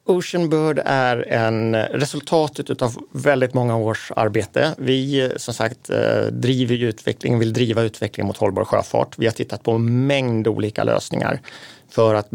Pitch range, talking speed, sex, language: 110-130 Hz, 145 wpm, male, Swedish